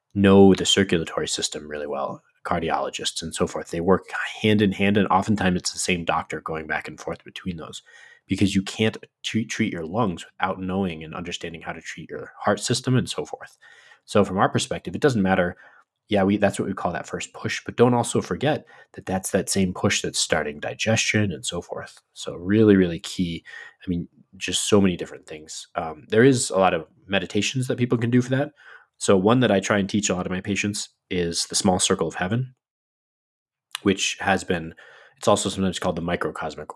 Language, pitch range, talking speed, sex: English, 95-115 Hz, 210 wpm, male